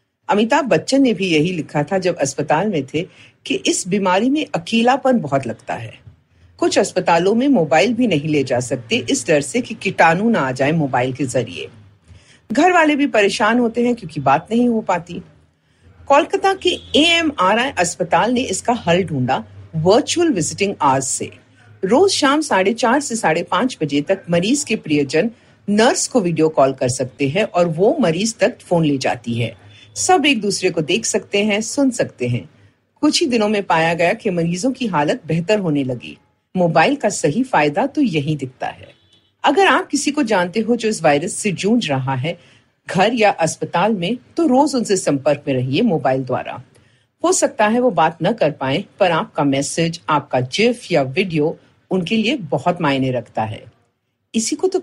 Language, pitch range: Hindi, 145-235 Hz